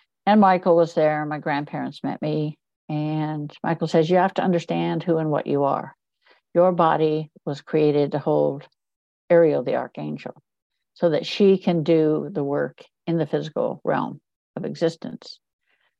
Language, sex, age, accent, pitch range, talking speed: English, female, 60-79, American, 145-165 Hz, 160 wpm